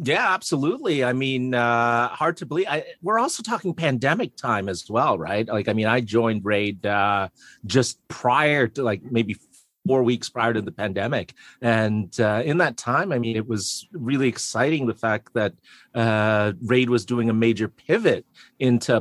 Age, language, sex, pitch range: 30-49, English, male, 115-150 Hz